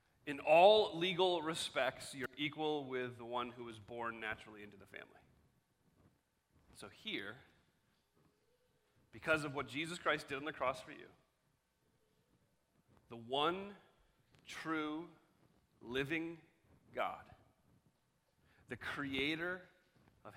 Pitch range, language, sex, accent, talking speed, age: 115-145 Hz, English, male, American, 110 wpm, 40-59